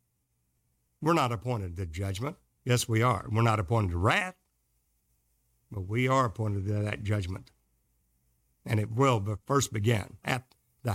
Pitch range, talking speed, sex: 100-155 Hz, 155 wpm, male